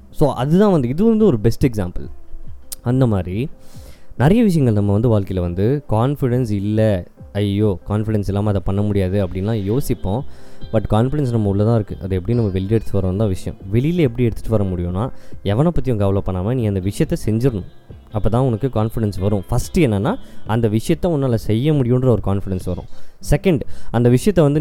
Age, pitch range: 20-39, 100-130 Hz